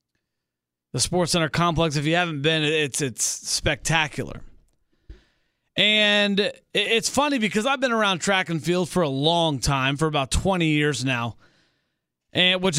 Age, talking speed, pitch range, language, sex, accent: 30-49, 150 wpm, 150-215 Hz, English, male, American